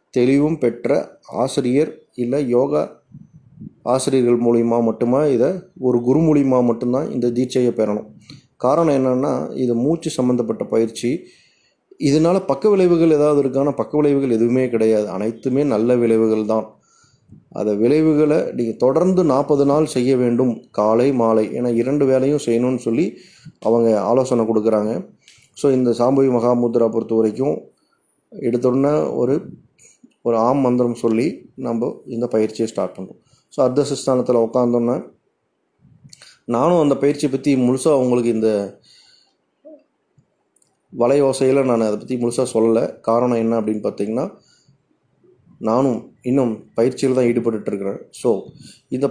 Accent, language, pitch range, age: native, Tamil, 115-135 Hz, 30-49